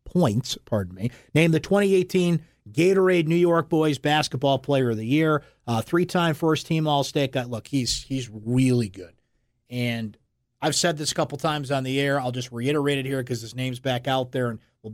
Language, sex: English, male